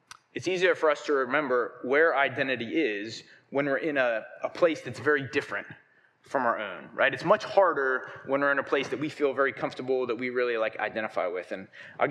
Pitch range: 120-160 Hz